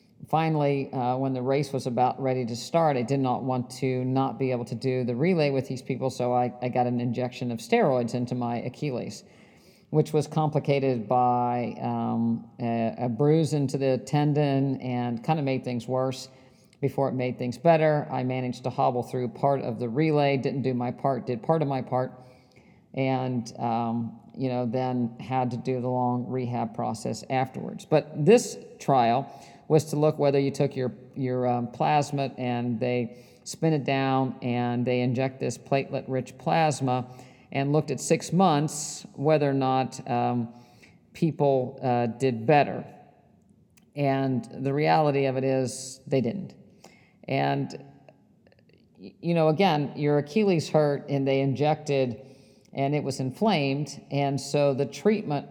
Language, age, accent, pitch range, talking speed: English, 50-69, American, 125-145 Hz, 165 wpm